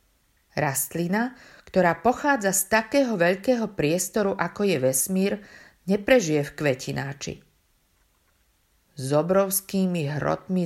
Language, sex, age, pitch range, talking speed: Slovak, female, 50-69, 145-195 Hz, 90 wpm